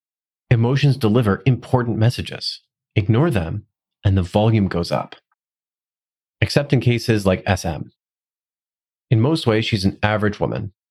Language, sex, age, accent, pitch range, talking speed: English, male, 30-49, American, 95-125 Hz, 125 wpm